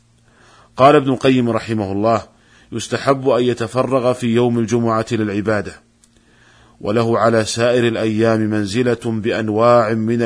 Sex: male